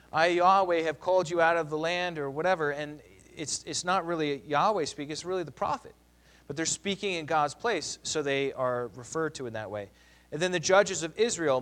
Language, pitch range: English, 135-170 Hz